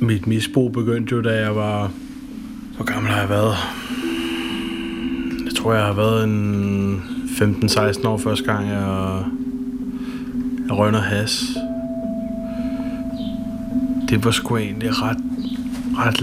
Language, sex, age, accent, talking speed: Danish, male, 20-39, native, 120 wpm